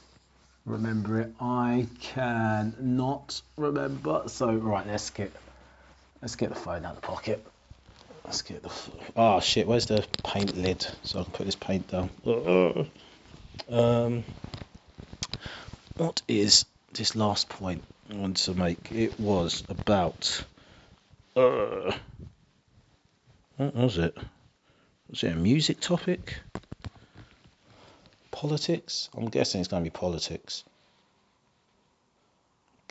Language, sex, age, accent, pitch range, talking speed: English, male, 30-49, British, 90-125 Hz, 115 wpm